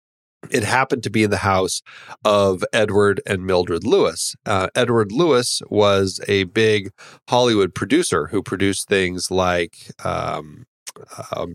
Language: English